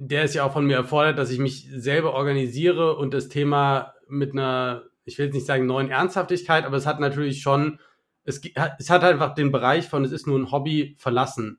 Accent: German